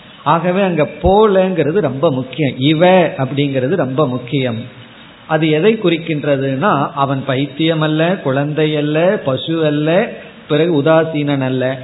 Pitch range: 135-185 Hz